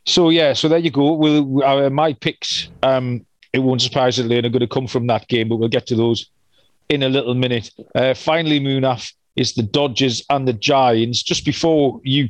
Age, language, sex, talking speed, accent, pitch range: 40-59, English, male, 215 wpm, British, 130-155 Hz